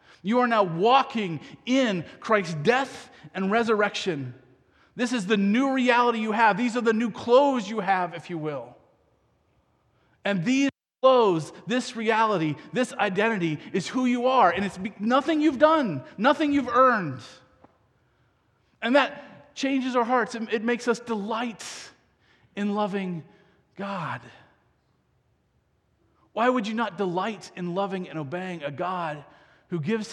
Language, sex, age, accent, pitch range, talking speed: English, male, 30-49, American, 140-230 Hz, 140 wpm